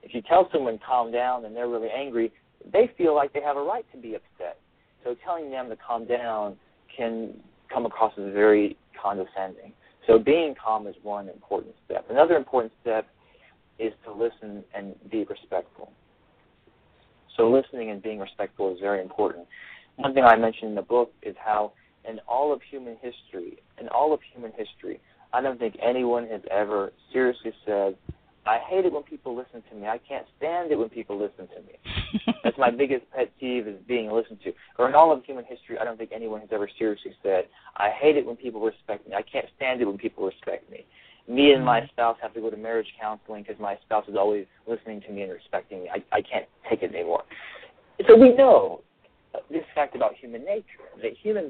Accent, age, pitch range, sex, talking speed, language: American, 40-59, 110-140 Hz, male, 205 wpm, English